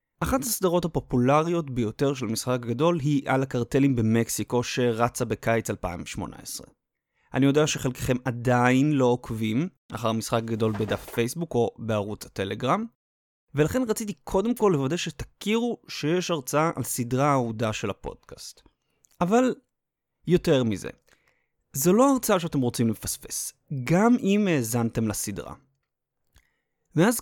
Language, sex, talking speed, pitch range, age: Hebrew, male, 120 wpm, 120-175 Hz, 30-49